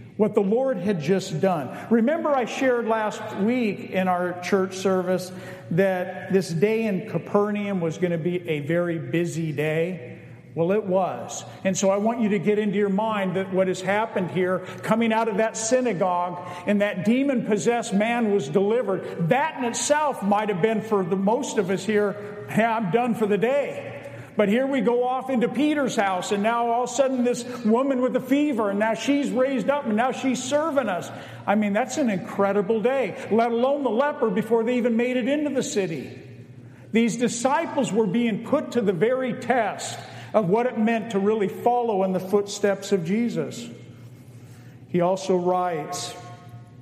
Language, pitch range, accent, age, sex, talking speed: English, 180-235 Hz, American, 50-69, male, 185 wpm